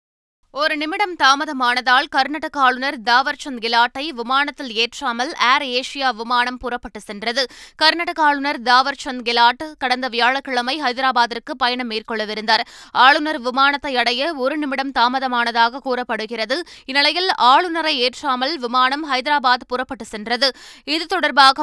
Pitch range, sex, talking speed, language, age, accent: 235-275 Hz, female, 110 wpm, Tamil, 20-39, native